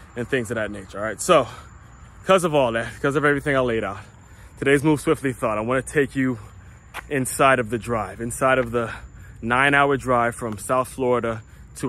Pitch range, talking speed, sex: 110-135 Hz, 200 wpm, male